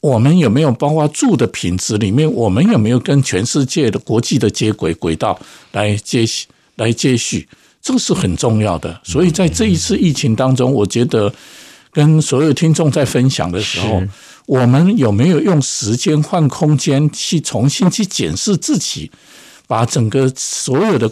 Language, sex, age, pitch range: Chinese, male, 60-79, 115-155 Hz